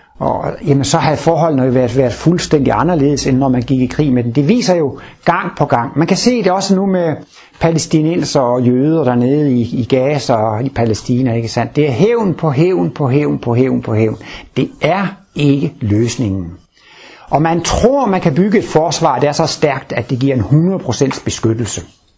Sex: male